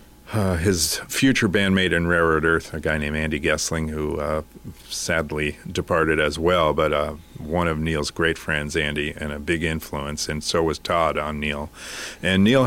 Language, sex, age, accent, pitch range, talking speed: English, male, 50-69, American, 80-100 Hz, 180 wpm